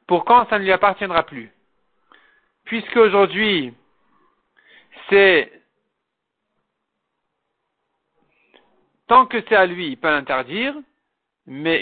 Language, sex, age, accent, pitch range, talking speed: French, male, 50-69, French, 155-210 Hz, 95 wpm